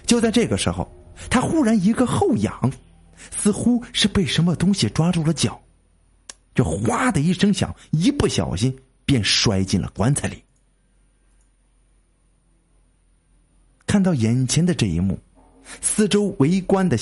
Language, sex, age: Chinese, male, 50-69